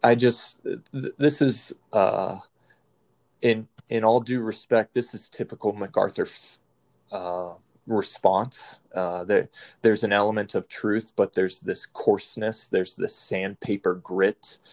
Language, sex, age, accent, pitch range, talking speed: English, male, 20-39, American, 100-125 Hz, 140 wpm